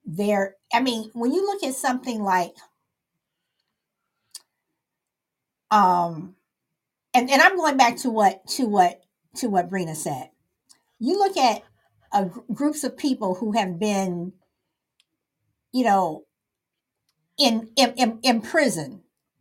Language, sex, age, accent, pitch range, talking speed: English, female, 50-69, American, 195-260 Hz, 125 wpm